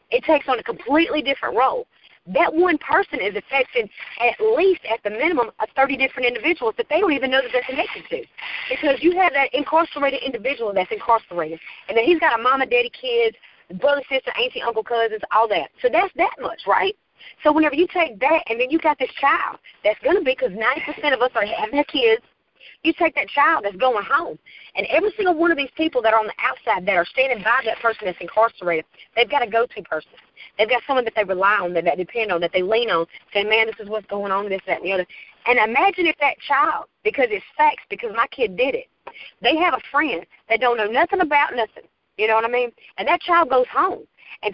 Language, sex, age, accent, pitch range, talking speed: English, female, 40-59, American, 225-355 Hz, 235 wpm